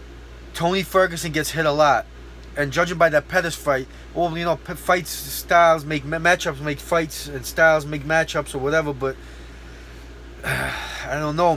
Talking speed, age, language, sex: 165 wpm, 20-39, English, male